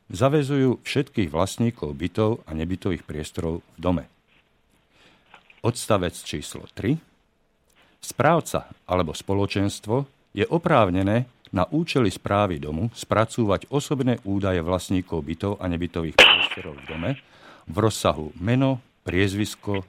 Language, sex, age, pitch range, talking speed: Slovak, male, 50-69, 85-115 Hz, 105 wpm